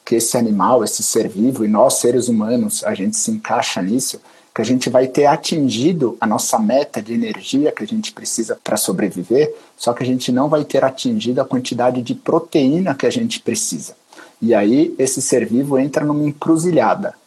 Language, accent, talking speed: Portuguese, Brazilian, 195 wpm